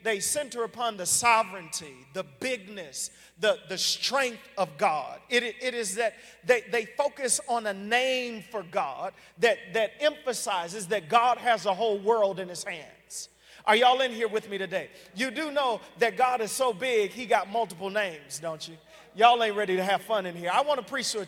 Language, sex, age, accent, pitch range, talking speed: English, male, 40-59, American, 200-250 Hz, 200 wpm